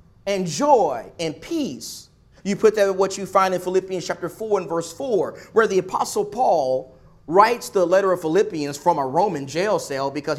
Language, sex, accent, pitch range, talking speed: English, male, American, 150-245 Hz, 185 wpm